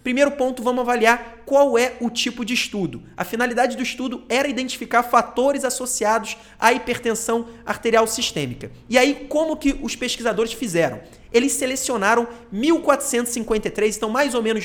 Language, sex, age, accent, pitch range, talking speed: Portuguese, male, 30-49, Brazilian, 215-255 Hz, 145 wpm